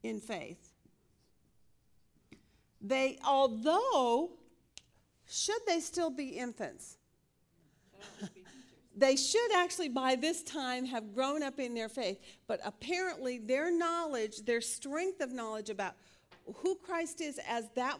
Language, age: English, 50-69